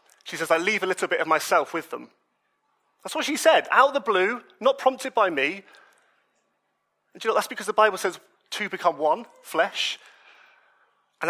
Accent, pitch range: British, 175-225 Hz